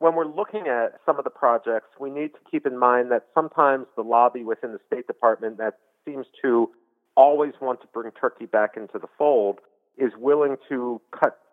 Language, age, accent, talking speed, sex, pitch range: English, 40-59, American, 200 wpm, male, 105-145 Hz